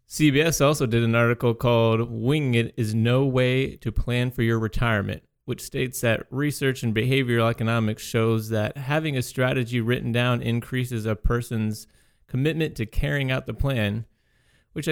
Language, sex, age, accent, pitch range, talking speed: English, male, 30-49, American, 115-130 Hz, 160 wpm